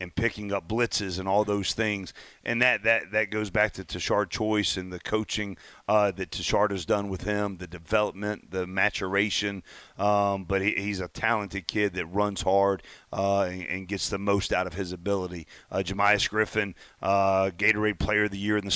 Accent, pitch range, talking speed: American, 95-105 Hz, 200 wpm